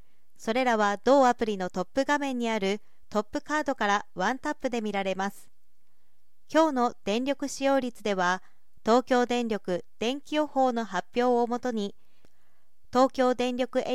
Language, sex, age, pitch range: Japanese, female, 40-59, 210-265 Hz